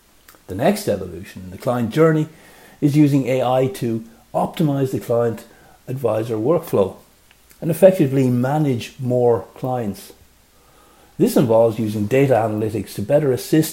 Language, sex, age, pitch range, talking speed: English, male, 60-79, 110-145 Hz, 125 wpm